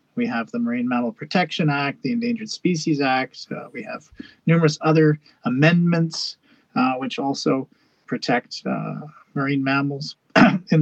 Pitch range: 140-225 Hz